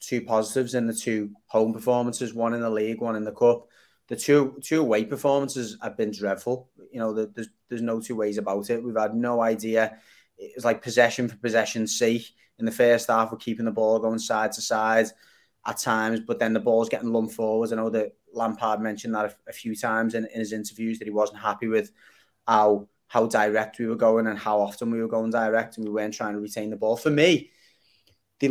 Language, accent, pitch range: English, British, 110-130 Hz